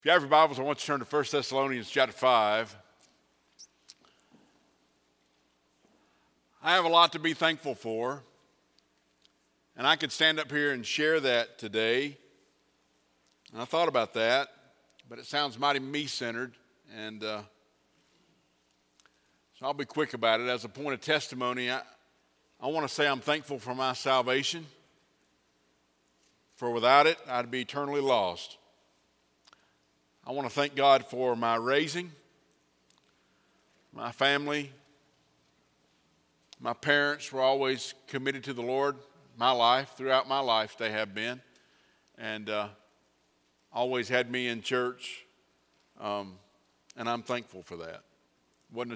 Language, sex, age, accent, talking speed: English, male, 50-69, American, 135 wpm